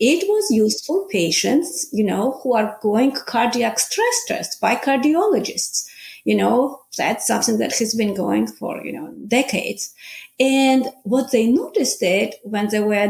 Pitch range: 210-285 Hz